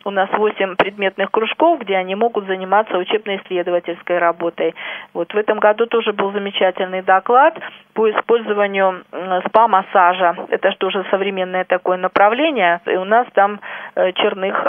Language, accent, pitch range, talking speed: Russian, native, 185-220 Hz, 140 wpm